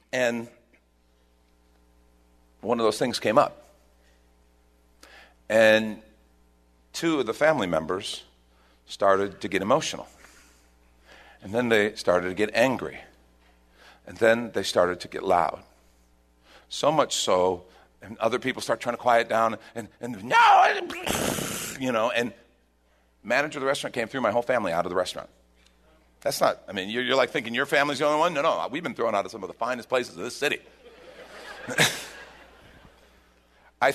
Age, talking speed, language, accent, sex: 50-69, 155 wpm, English, American, male